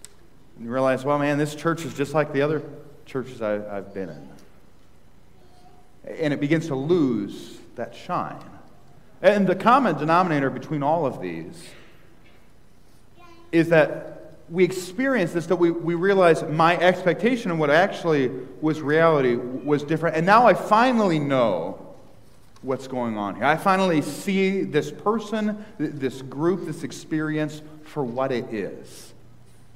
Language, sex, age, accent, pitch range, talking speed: English, male, 40-59, American, 120-170 Hz, 145 wpm